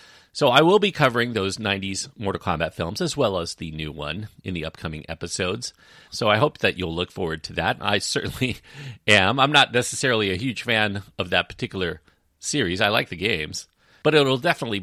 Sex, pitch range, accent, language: male, 90-120 Hz, American, English